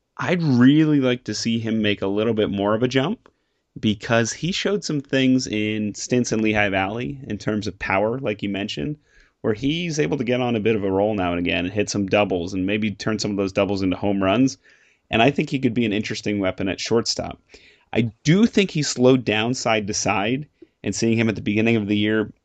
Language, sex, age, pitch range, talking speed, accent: English, male, 30-49, 100-125 Hz, 235 wpm, American